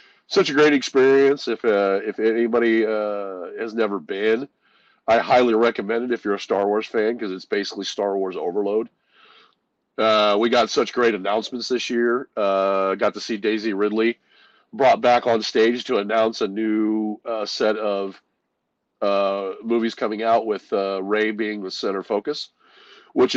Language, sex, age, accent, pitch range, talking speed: English, male, 40-59, American, 105-120 Hz, 165 wpm